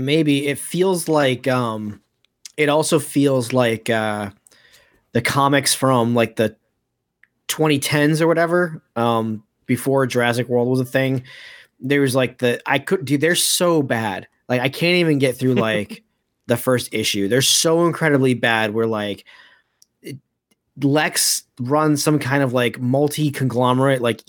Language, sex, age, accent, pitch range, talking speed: English, male, 20-39, American, 120-145 Hz, 150 wpm